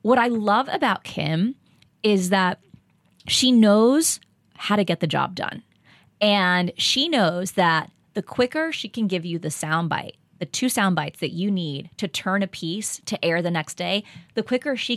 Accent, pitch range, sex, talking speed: American, 170-210 Hz, female, 180 wpm